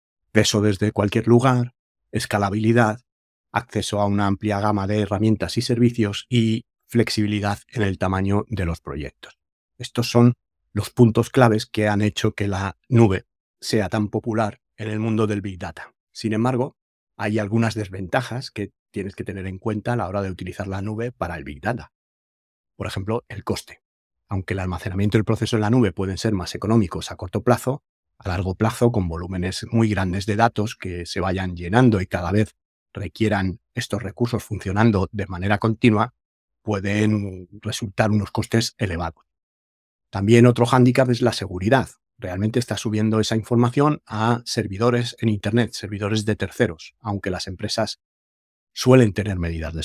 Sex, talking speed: male, 165 wpm